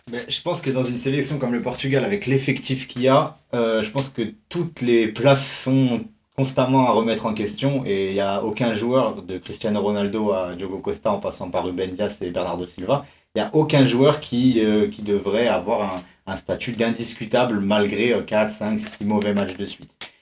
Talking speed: 210 wpm